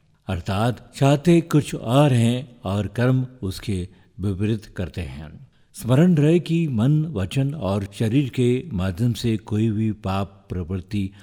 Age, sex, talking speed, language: 50-69, male, 120 wpm, Hindi